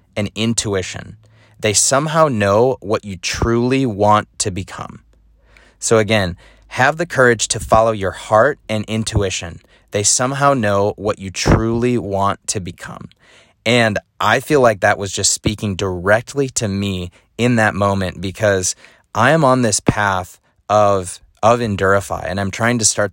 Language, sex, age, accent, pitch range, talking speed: English, male, 30-49, American, 95-110 Hz, 155 wpm